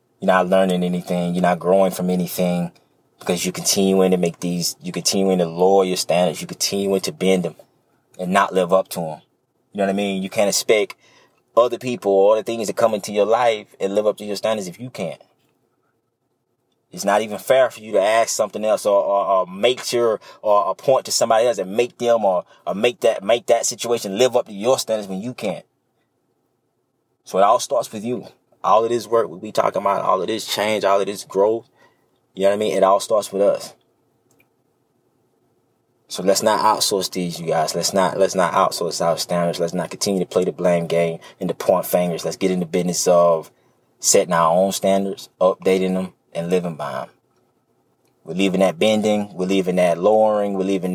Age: 20-39